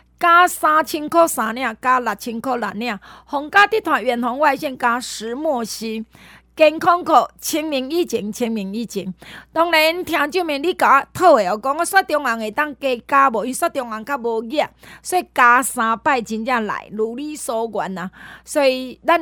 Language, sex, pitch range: Chinese, female, 225-300 Hz